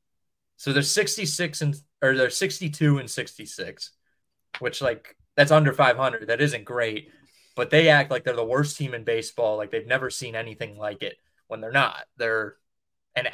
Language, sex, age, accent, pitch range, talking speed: English, male, 20-39, American, 110-150 Hz, 175 wpm